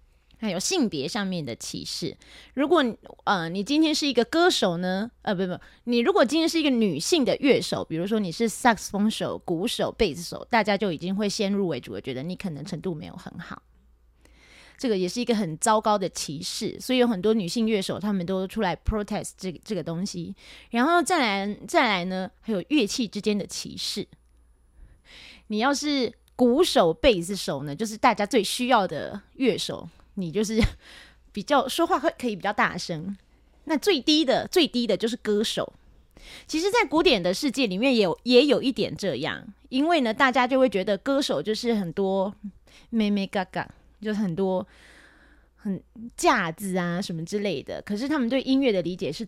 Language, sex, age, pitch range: Chinese, female, 20-39, 185-245 Hz